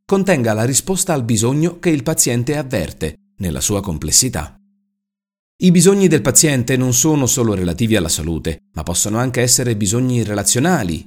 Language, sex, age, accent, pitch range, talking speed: Italian, male, 40-59, native, 105-160 Hz, 150 wpm